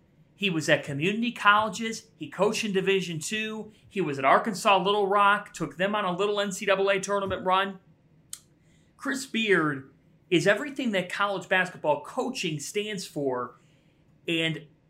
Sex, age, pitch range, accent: male, 40-59, 150-195 Hz, American